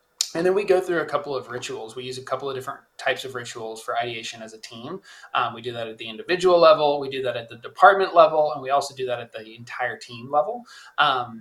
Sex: male